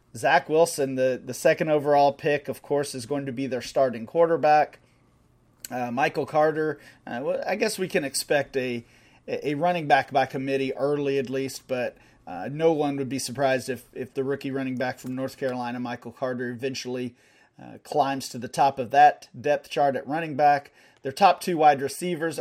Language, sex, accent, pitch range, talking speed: English, male, American, 130-155 Hz, 185 wpm